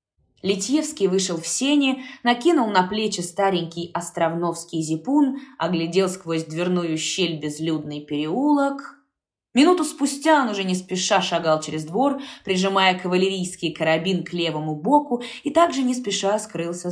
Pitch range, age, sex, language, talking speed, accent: 160-215 Hz, 20-39, female, Russian, 130 wpm, native